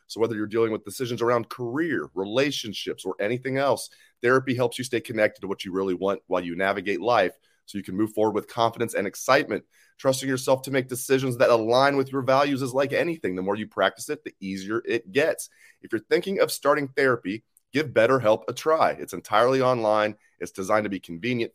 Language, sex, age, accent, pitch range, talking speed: English, male, 30-49, American, 105-135 Hz, 210 wpm